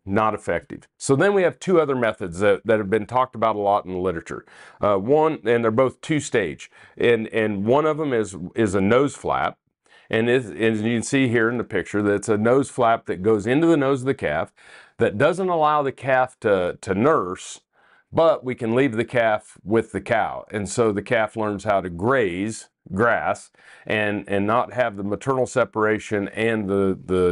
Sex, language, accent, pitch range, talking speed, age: male, English, American, 100-125 Hz, 205 wpm, 40-59